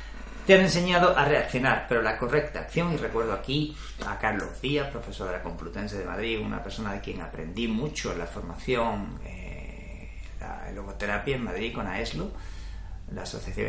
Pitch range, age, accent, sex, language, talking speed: 90-140 Hz, 40-59, Spanish, male, Spanish, 170 wpm